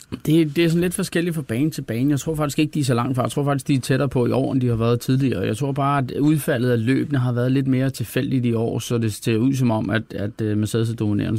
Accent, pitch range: native, 120-145 Hz